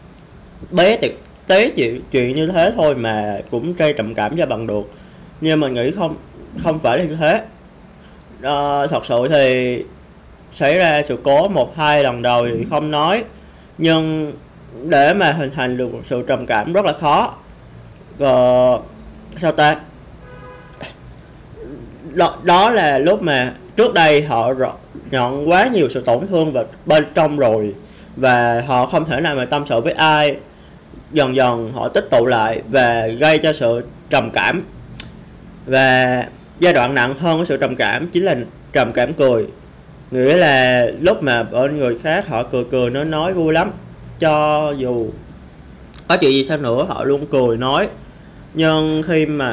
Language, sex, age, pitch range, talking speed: Vietnamese, male, 20-39, 125-155 Hz, 165 wpm